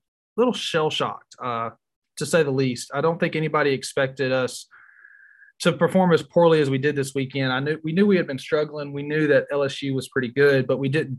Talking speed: 225 wpm